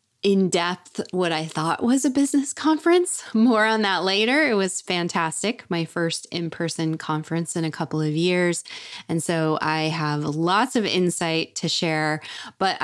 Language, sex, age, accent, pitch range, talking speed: English, female, 20-39, American, 165-205 Hz, 160 wpm